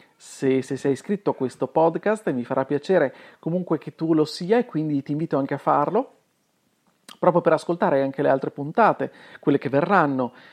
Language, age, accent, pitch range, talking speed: Italian, 40-59, native, 145-205 Hz, 190 wpm